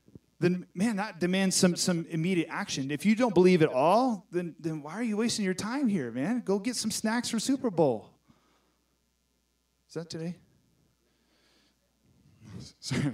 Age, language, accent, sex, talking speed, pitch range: 30-49, English, American, male, 160 wpm, 135-190 Hz